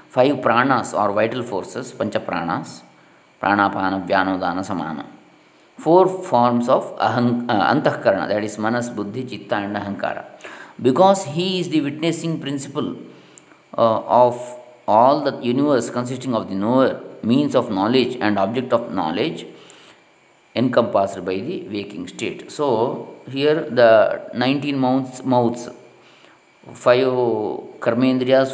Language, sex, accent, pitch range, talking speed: Kannada, male, native, 115-140 Hz, 115 wpm